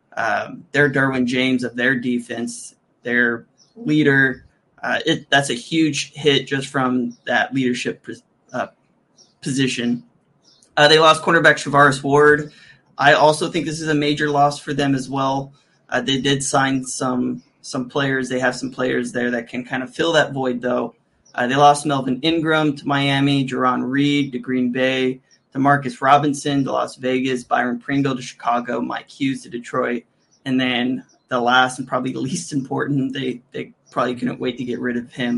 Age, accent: 20-39, American